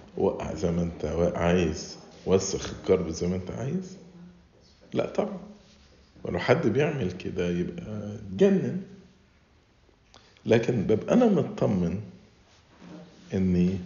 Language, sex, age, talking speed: English, male, 50-69, 105 wpm